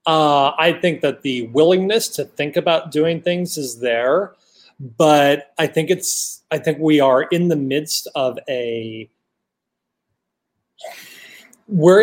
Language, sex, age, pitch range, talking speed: English, male, 30-49, 125-170 Hz, 135 wpm